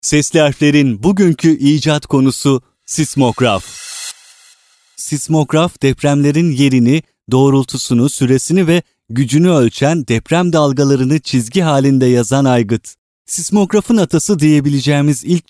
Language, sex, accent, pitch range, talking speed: Turkish, male, native, 130-160 Hz, 95 wpm